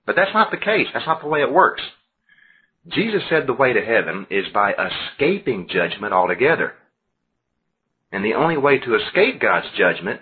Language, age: English, 40-59